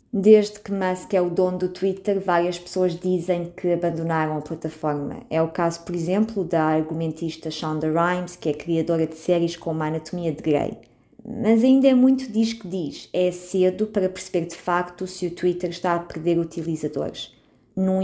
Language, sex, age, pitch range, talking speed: Portuguese, female, 20-39, 165-190 Hz, 185 wpm